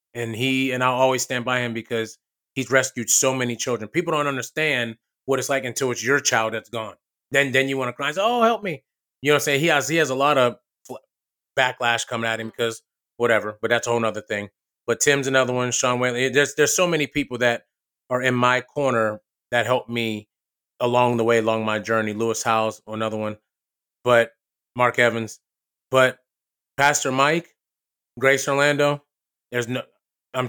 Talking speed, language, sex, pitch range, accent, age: 200 wpm, English, male, 120-155 Hz, American, 30-49